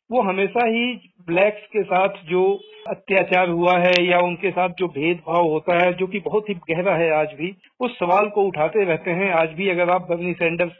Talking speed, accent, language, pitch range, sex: 205 wpm, native, Hindi, 175-210 Hz, male